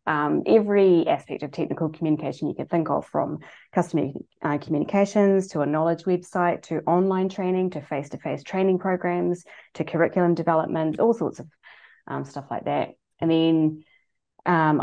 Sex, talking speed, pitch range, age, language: female, 155 wpm, 155-195 Hz, 20-39, English